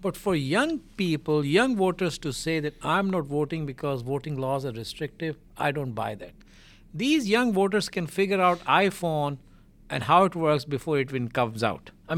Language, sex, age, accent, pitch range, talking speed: English, male, 60-79, Indian, 145-195 Hz, 185 wpm